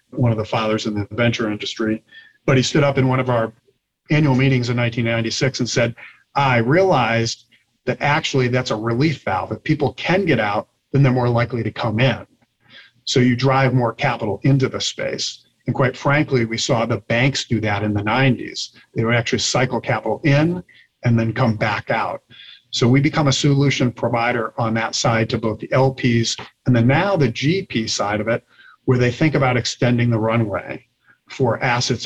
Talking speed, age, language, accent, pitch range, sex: 195 wpm, 40-59, English, American, 115-135 Hz, male